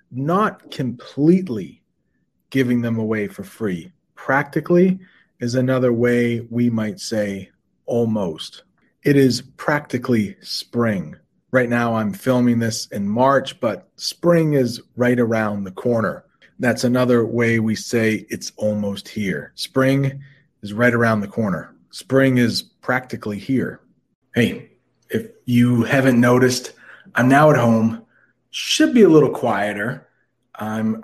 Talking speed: 130 wpm